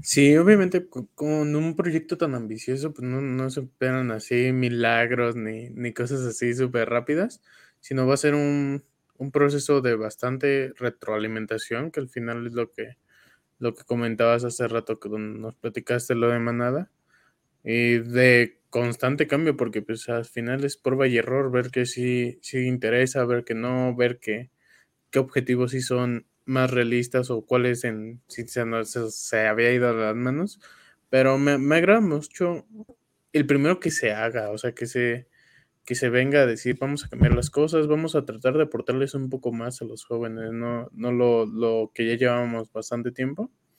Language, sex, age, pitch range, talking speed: Spanish, male, 20-39, 120-140 Hz, 180 wpm